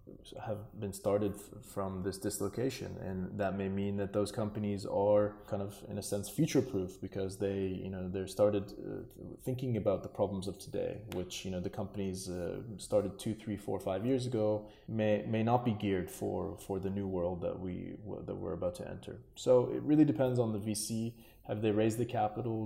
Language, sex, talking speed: English, male, 200 wpm